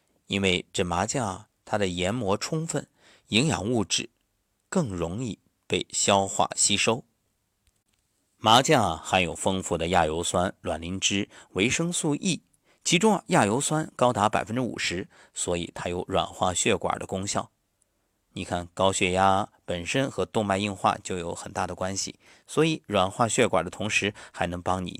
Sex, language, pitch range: male, Chinese, 95-125 Hz